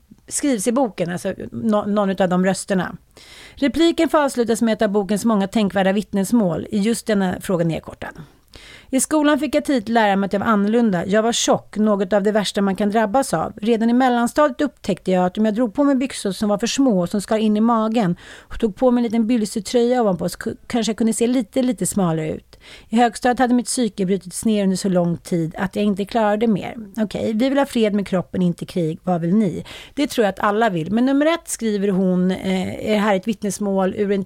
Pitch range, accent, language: 190-235 Hz, native, Swedish